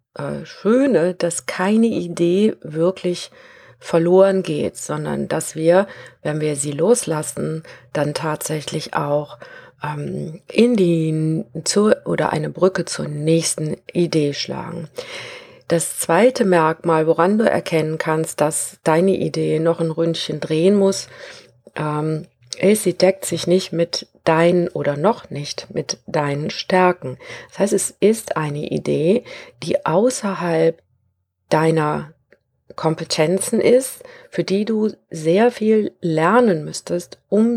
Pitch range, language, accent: 155-195 Hz, German, German